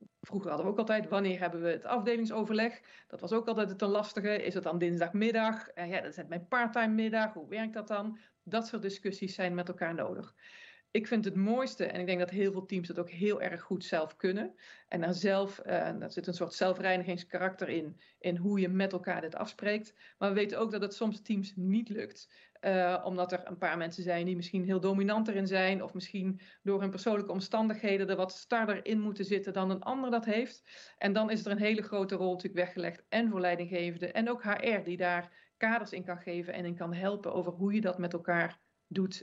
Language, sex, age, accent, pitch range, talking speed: Dutch, female, 40-59, Dutch, 185-215 Hz, 220 wpm